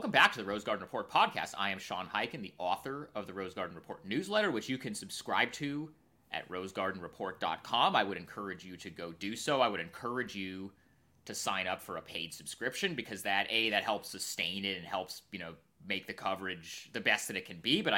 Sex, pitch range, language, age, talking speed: male, 95-115 Hz, English, 30-49, 225 wpm